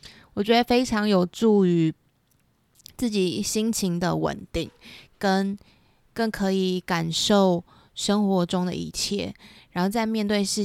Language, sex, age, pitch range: Chinese, female, 20-39, 175-220 Hz